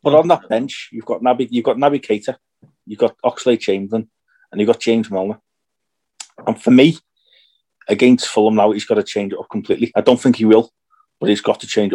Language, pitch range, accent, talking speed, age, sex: English, 105-150 Hz, British, 215 wpm, 30-49, male